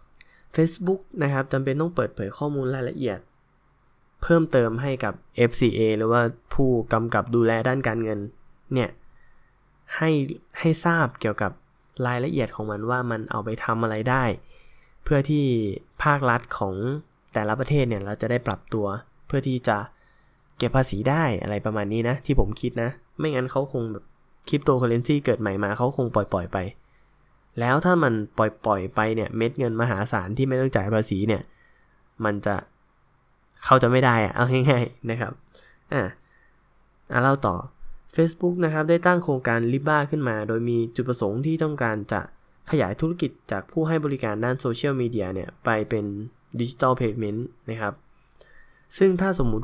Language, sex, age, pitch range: Thai, male, 10-29, 110-135 Hz